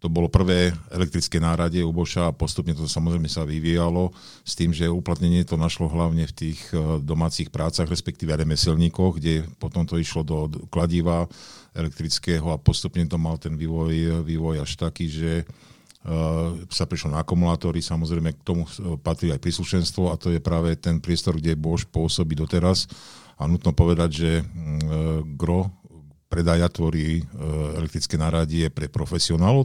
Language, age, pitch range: Slovak, 50-69, 80-90 Hz